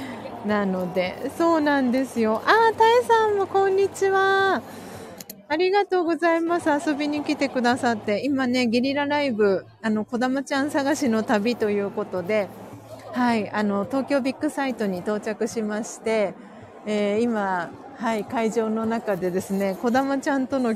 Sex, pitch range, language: female, 205-275 Hz, Japanese